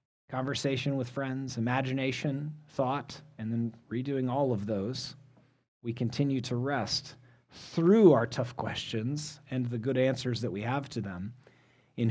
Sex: male